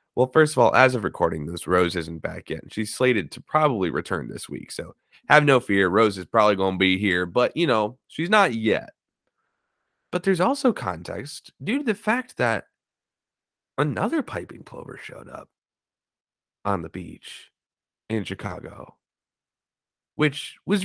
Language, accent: English, American